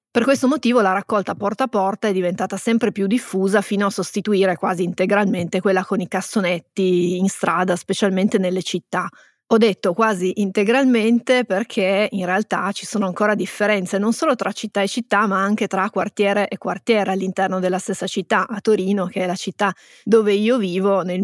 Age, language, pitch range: 20-39, Italian, 185-210 Hz